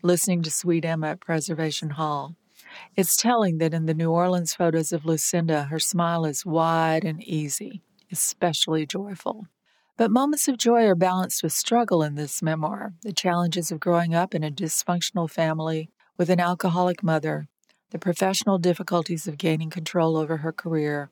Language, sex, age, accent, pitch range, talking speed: English, female, 50-69, American, 165-190 Hz, 165 wpm